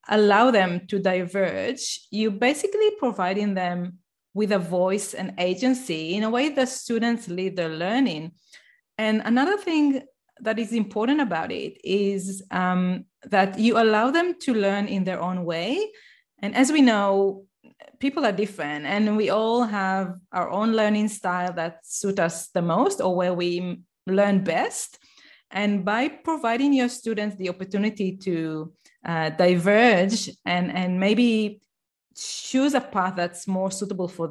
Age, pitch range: 30-49, 190-245 Hz